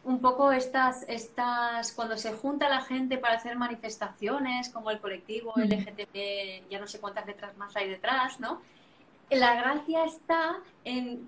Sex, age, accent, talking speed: female, 20-39, Spanish, 150 wpm